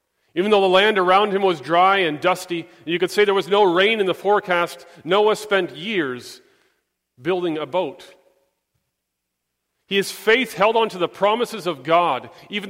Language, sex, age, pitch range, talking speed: English, male, 40-59, 175-215 Hz, 175 wpm